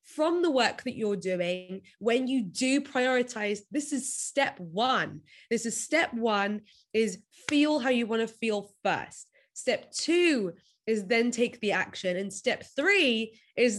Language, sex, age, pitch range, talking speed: English, female, 20-39, 195-260 Hz, 160 wpm